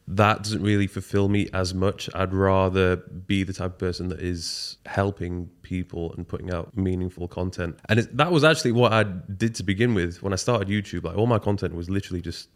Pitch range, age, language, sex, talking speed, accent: 90-100 Hz, 20-39, English, male, 215 wpm, British